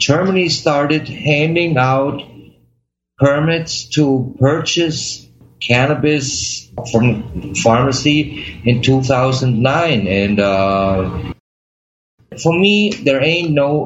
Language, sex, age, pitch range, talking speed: English, male, 50-69, 110-155 Hz, 95 wpm